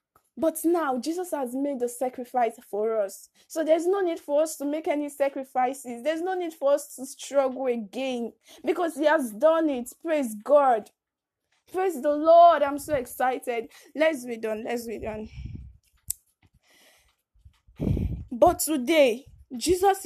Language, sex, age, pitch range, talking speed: English, female, 20-39, 245-320 Hz, 145 wpm